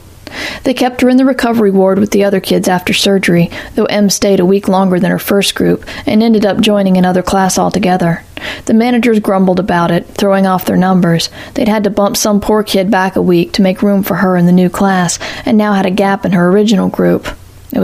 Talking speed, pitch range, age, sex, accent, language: 230 wpm, 180-210 Hz, 40-59, female, American, English